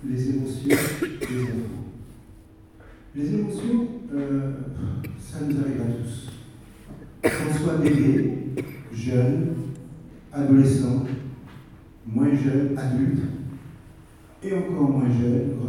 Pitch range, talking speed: 115-140 Hz, 90 wpm